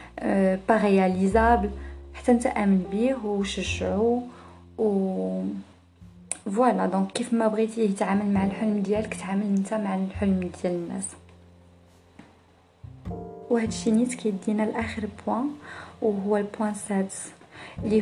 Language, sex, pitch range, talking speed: Arabic, female, 180-215 Hz, 110 wpm